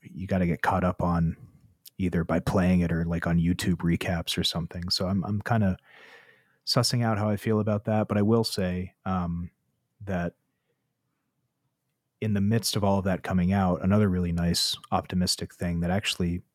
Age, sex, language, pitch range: 30-49, male, English, 90-110 Hz